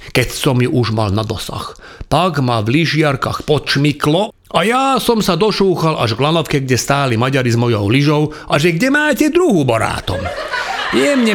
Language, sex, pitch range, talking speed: Slovak, male, 120-170 Hz, 175 wpm